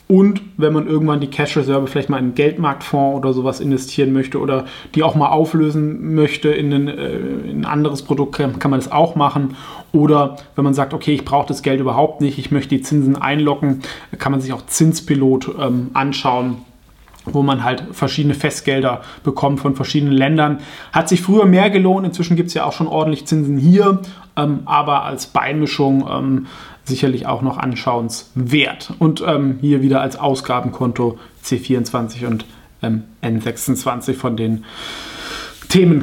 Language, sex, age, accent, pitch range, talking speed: German, male, 30-49, German, 135-160 Hz, 165 wpm